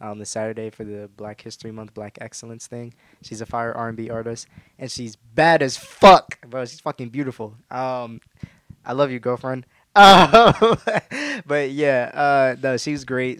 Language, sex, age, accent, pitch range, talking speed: English, male, 20-39, American, 110-130 Hz, 185 wpm